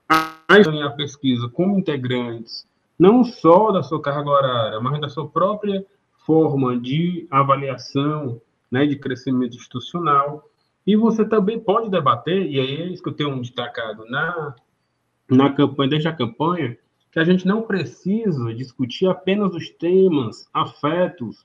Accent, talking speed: Brazilian, 135 wpm